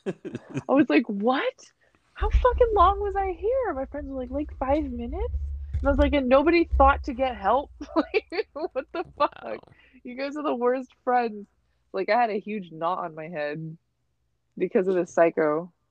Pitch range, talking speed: 160-245 Hz, 190 wpm